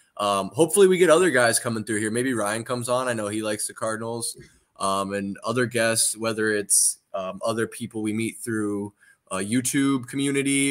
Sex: male